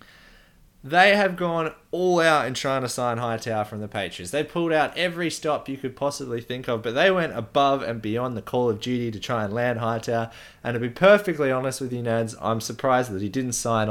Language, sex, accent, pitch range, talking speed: English, male, Australian, 130-170 Hz, 225 wpm